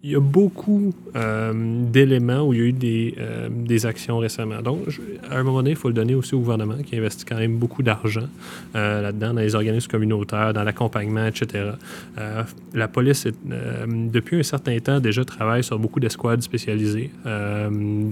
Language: French